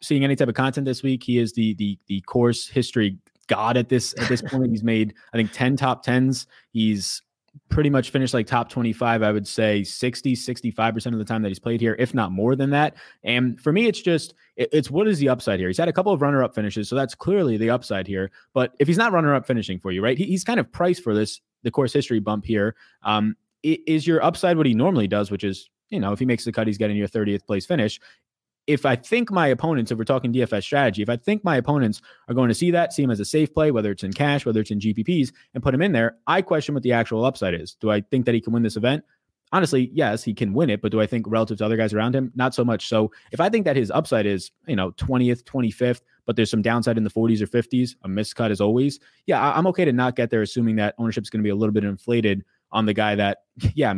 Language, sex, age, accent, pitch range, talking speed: English, male, 20-39, American, 105-135 Hz, 270 wpm